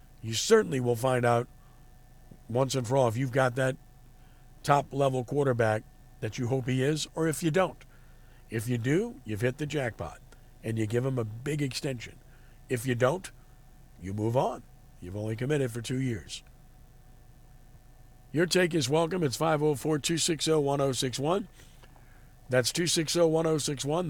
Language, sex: English, male